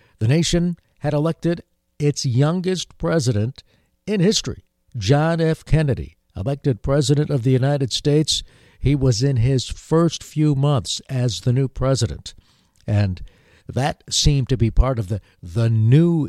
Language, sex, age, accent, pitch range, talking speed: English, male, 60-79, American, 110-145 Hz, 145 wpm